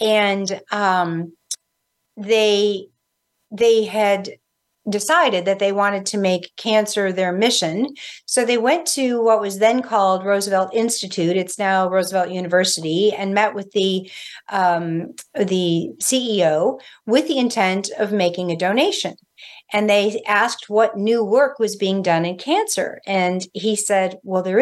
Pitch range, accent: 190-230 Hz, American